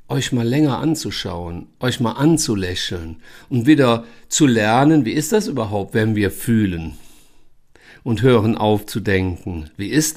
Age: 50-69